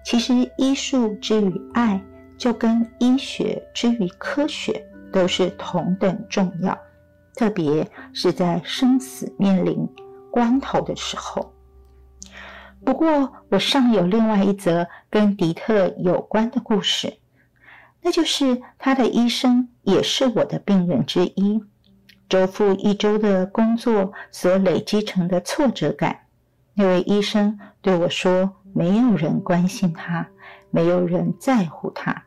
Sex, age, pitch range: female, 50-69, 180-230 Hz